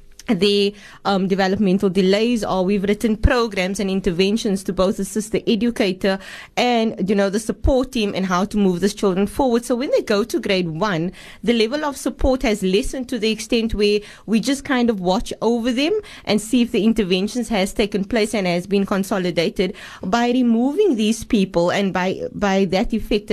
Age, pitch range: 20-39, 195-230 Hz